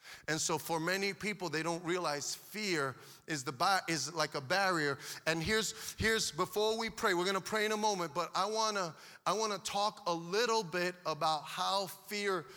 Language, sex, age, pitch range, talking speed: English, male, 30-49, 160-210 Hz, 205 wpm